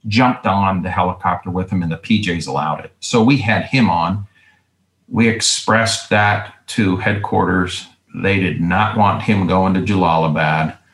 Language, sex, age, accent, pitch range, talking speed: English, male, 40-59, American, 85-100 Hz, 160 wpm